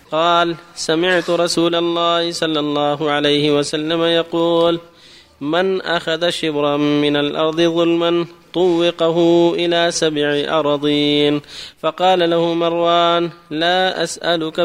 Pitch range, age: 150-170 Hz, 20-39